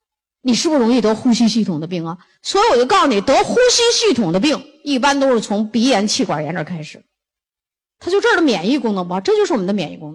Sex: female